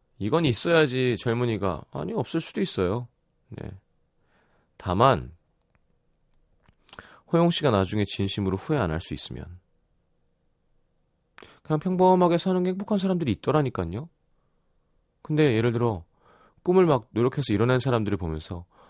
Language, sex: Korean, male